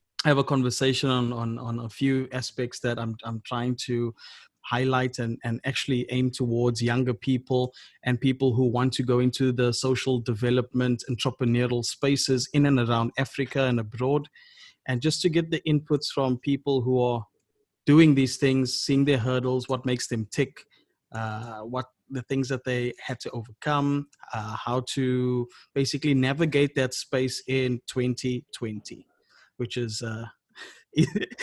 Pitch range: 120-135 Hz